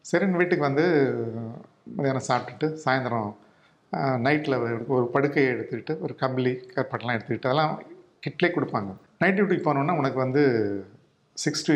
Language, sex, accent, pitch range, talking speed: Tamil, male, native, 125-155 Hz, 110 wpm